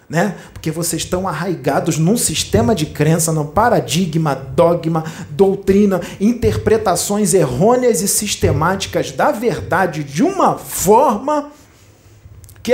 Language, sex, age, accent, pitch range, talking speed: Portuguese, male, 40-59, Brazilian, 155-235 Hz, 105 wpm